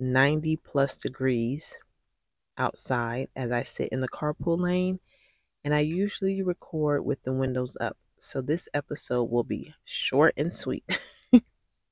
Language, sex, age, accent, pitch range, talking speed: English, female, 30-49, American, 125-150 Hz, 135 wpm